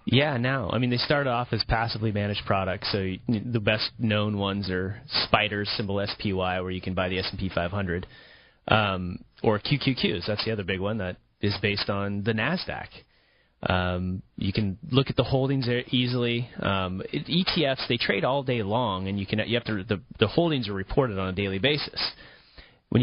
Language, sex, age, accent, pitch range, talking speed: English, male, 30-49, American, 95-125 Hz, 195 wpm